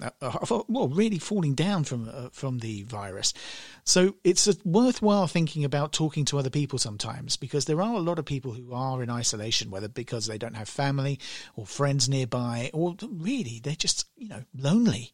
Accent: British